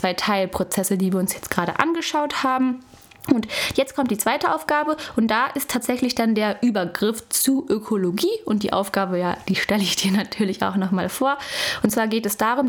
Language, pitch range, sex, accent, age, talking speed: German, 195-250 Hz, female, German, 10-29, 195 wpm